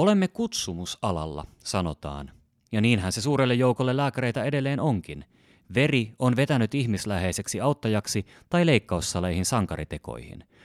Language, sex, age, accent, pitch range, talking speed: Finnish, male, 30-49, native, 95-130 Hz, 105 wpm